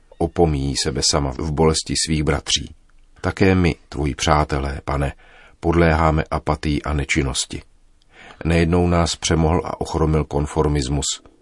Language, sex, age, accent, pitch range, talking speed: Czech, male, 40-59, native, 70-85 Hz, 115 wpm